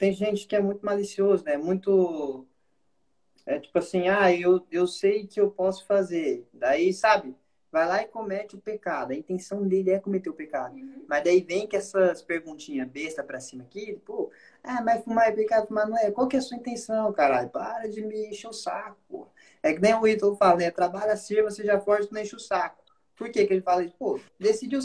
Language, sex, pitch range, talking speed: Portuguese, male, 180-220 Hz, 220 wpm